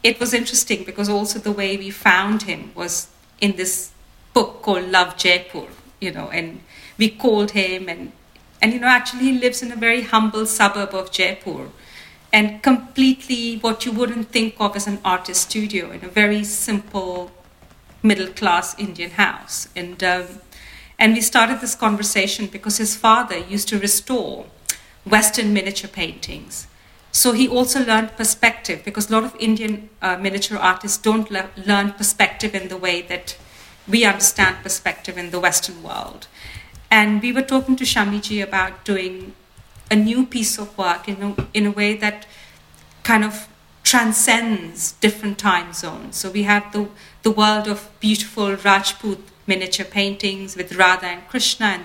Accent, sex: Indian, female